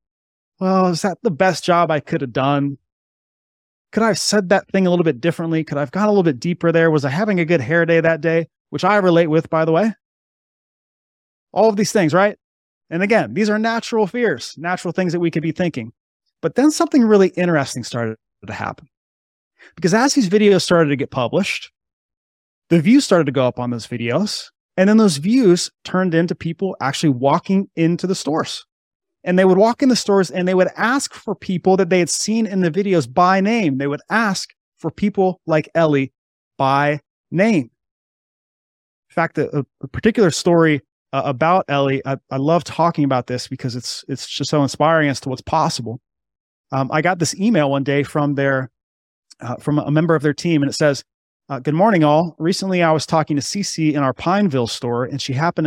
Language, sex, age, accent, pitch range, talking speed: English, male, 30-49, American, 140-190 Hz, 205 wpm